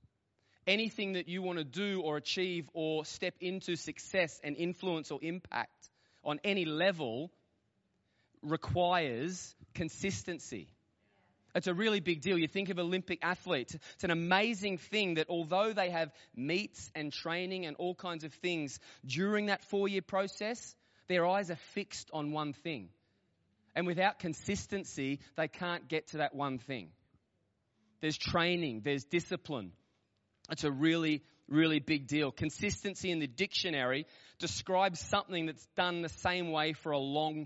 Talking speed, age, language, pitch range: 150 wpm, 20-39, English, 150-185 Hz